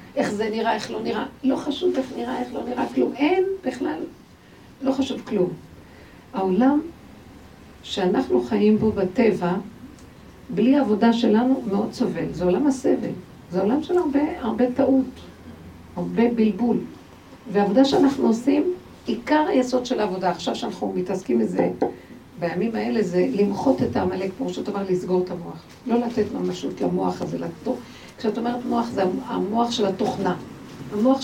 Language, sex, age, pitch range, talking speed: Hebrew, female, 50-69, 190-255 Hz, 145 wpm